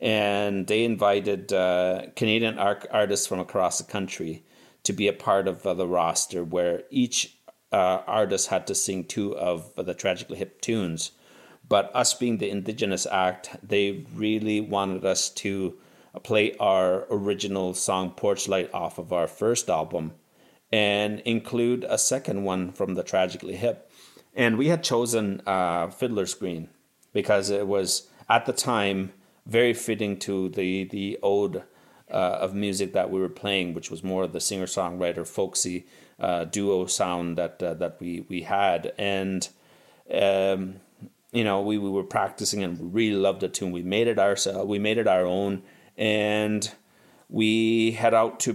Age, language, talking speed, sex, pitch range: 30-49, English, 160 wpm, male, 90-110 Hz